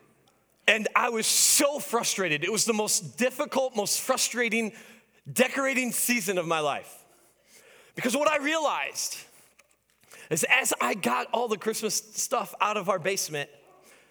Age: 30-49